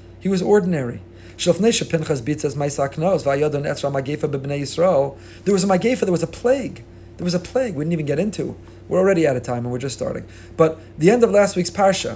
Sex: male